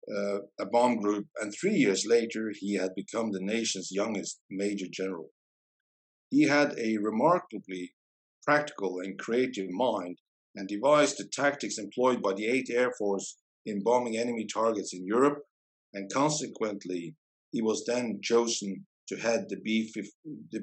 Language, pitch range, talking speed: English, 95-115 Hz, 145 wpm